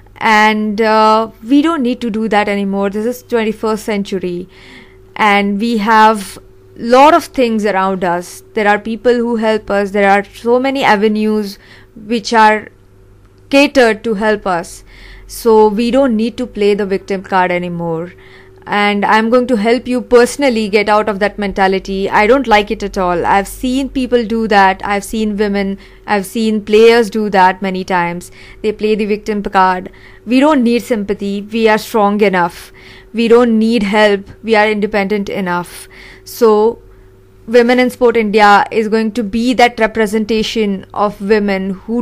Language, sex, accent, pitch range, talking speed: English, female, Indian, 195-230 Hz, 165 wpm